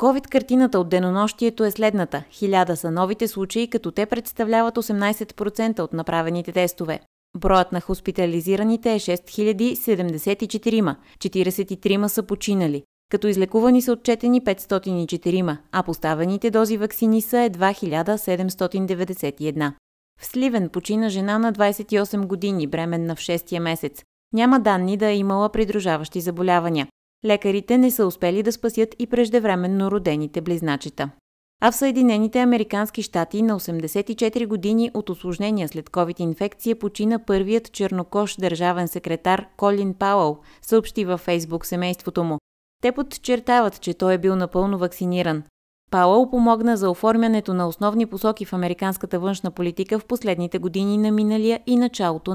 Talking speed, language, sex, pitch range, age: 130 wpm, Bulgarian, female, 175-220 Hz, 20-39